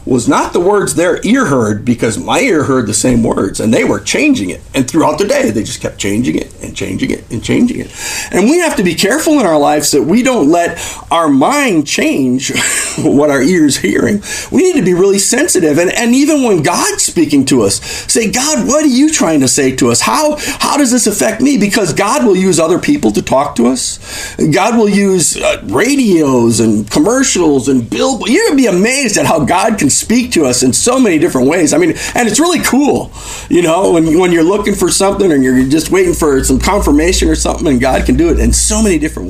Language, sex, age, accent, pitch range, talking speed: English, male, 40-59, American, 180-280 Hz, 230 wpm